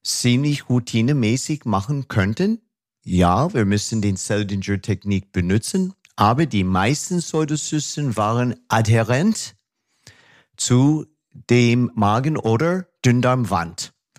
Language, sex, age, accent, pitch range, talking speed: German, male, 50-69, German, 105-155 Hz, 90 wpm